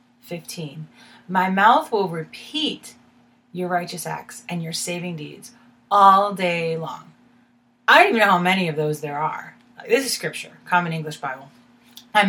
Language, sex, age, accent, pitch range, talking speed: English, female, 30-49, American, 165-240 Hz, 155 wpm